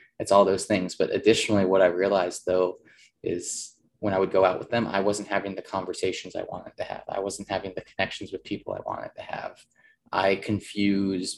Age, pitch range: 20-39, 95-105 Hz